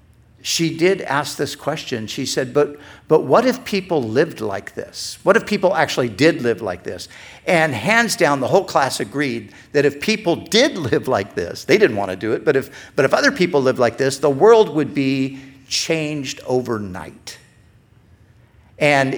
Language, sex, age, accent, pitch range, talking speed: English, male, 50-69, American, 110-150 Hz, 185 wpm